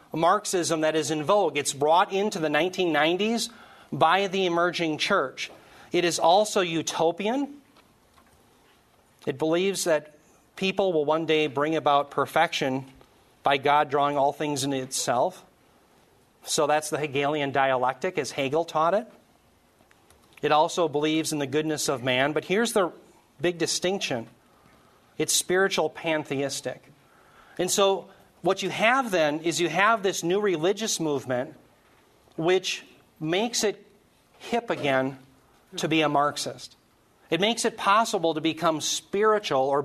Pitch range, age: 150-190 Hz, 40-59